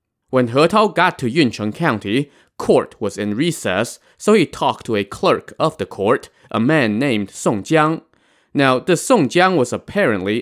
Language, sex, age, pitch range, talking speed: English, male, 20-39, 105-150 Hz, 180 wpm